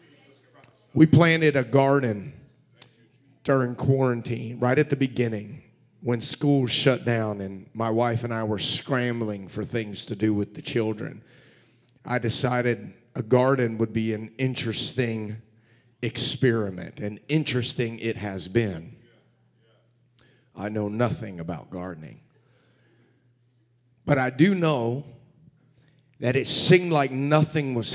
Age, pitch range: 40-59, 115-140 Hz